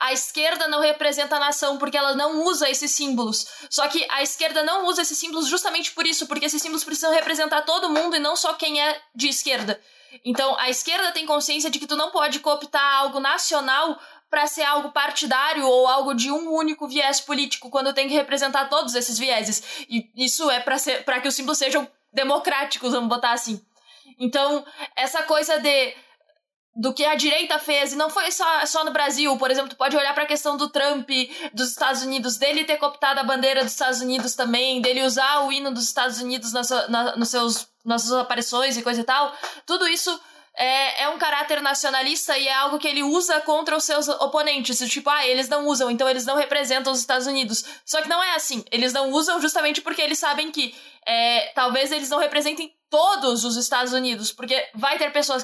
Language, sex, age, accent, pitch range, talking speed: Portuguese, female, 20-39, Brazilian, 260-305 Hz, 205 wpm